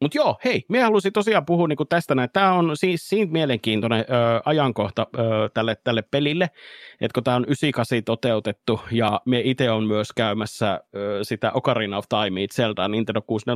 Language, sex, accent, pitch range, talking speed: Finnish, male, native, 105-125 Hz, 170 wpm